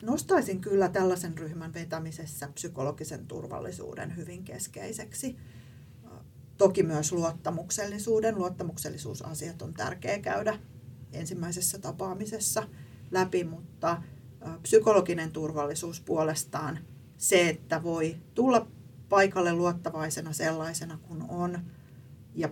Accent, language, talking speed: native, Finnish, 90 wpm